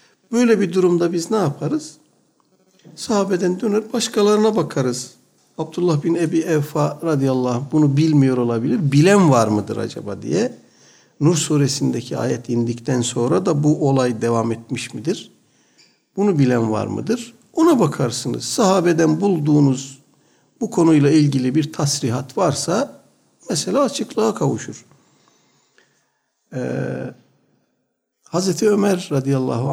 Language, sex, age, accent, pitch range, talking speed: Turkish, male, 60-79, native, 125-175 Hz, 110 wpm